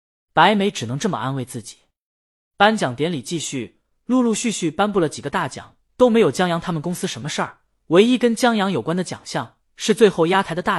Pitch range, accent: 135-200 Hz, native